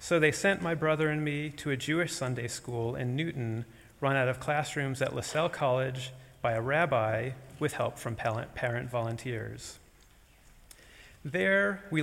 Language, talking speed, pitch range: English, 155 wpm, 120-155 Hz